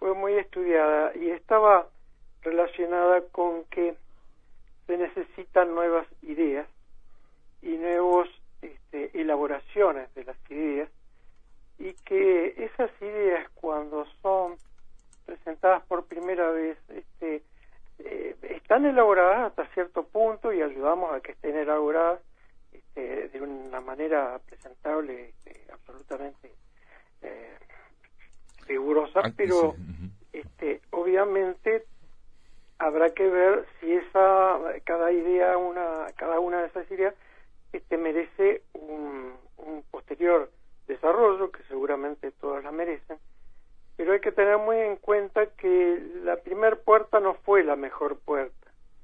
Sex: male